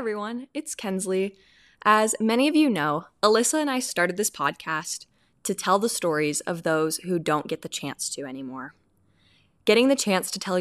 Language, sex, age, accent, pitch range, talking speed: English, female, 10-29, American, 165-215 Hz, 185 wpm